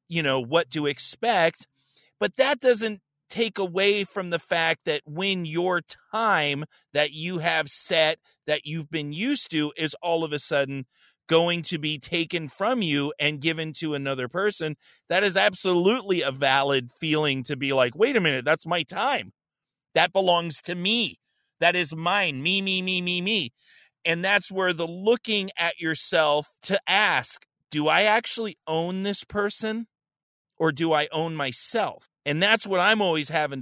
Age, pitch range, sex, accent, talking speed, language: 40-59, 150-195 Hz, male, American, 170 wpm, English